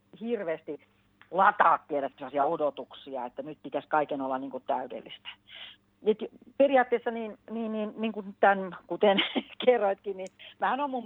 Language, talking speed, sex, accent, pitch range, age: Finnish, 85 wpm, female, native, 160-235 Hz, 40-59